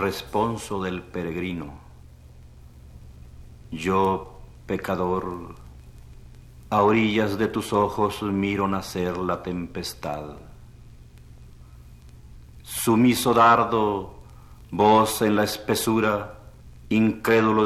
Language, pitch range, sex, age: Spanish, 65-105 Hz, male, 50-69